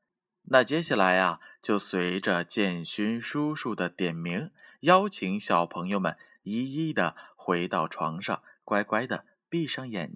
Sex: male